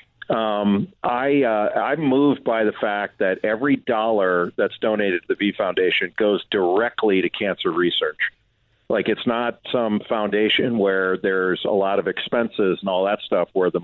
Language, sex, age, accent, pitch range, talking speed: English, male, 50-69, American, 95-120 Hz, 170 wpm